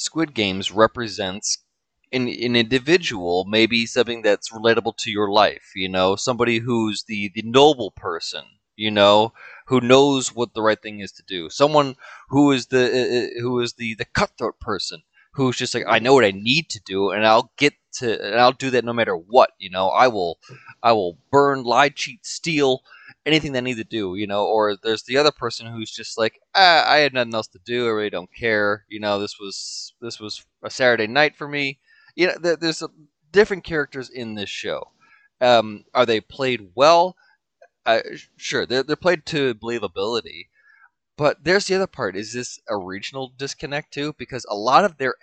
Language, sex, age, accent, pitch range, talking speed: English, male, 20-39, American, 110-145 Hz, 195 wpm